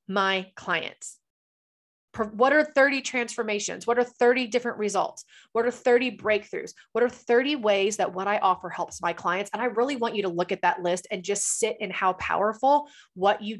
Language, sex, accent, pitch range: English, female, American, 180-225 Hz